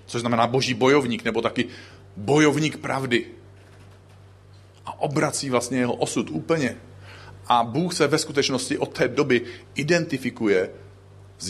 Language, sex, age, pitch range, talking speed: Czech, male, 40-59, 95-120 Hz, 125 wpm